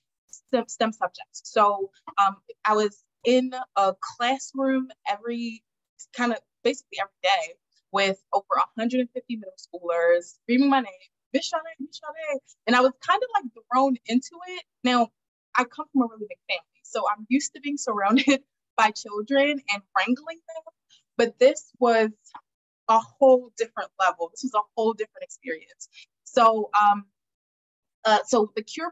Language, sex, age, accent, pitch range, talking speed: English, female, 20-39, American, 205-270 Hz, 150 wpm